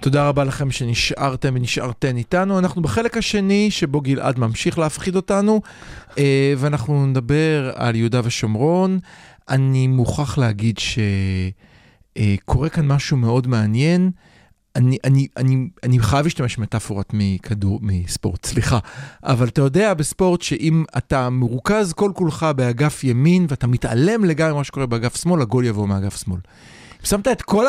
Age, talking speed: 40-59, 130 wpm